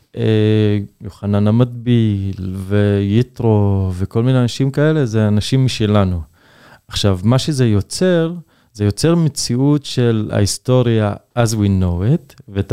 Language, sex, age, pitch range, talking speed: Hebrew, male, 20-39, 105-135 Hz, 115 wpm